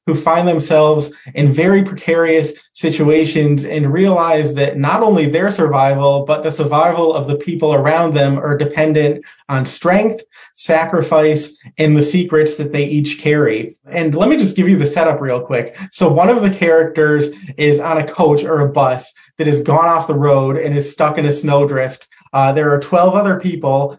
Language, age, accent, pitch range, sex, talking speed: English, 30-49, American, 150-175 Hz, male, 185 wpm